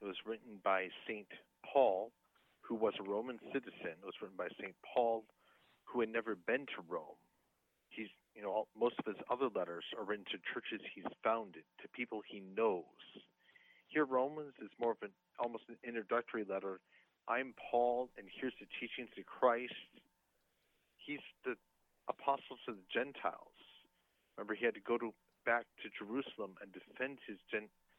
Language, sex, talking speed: English, male, 165 wpm